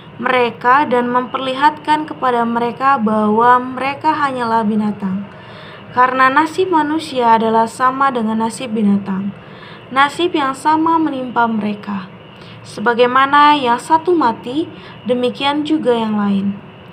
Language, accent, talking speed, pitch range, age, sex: Indonesian, native, 105 wpm, 210-270 Hz, 20-39, female